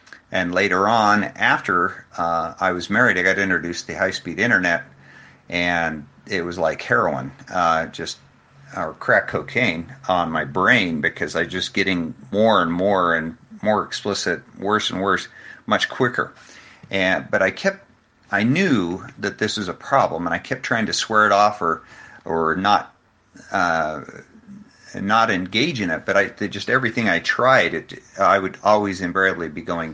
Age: 50-69